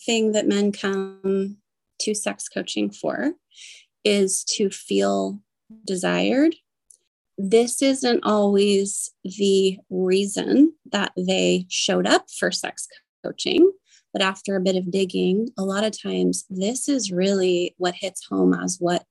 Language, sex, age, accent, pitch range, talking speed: English, female, 20-39, American, 185-210 Hz, 130 wpm